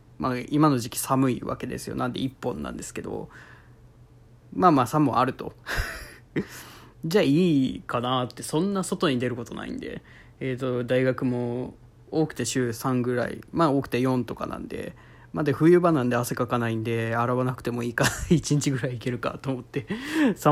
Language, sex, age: Japanese, male, 20-39